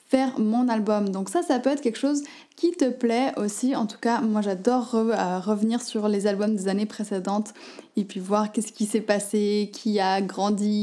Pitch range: 205-250 Hz